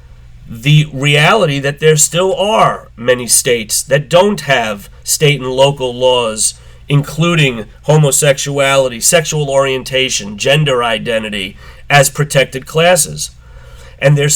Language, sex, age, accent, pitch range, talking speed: English, male, 40-59, American, 120-155 Hz, 110 wpm